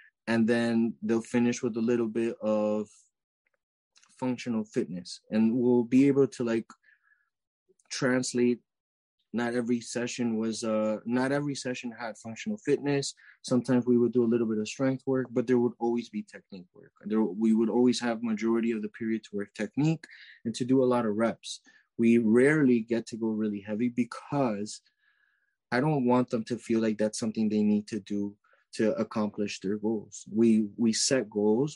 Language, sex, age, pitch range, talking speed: English, male, 20-39, 110-125 Hz, 175 wpm